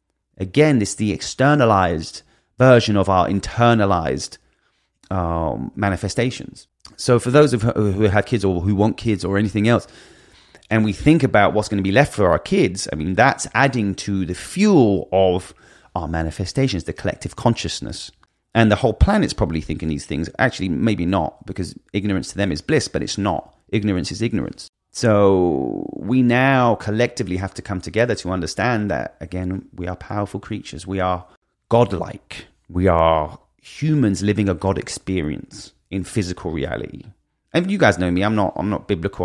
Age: 30-49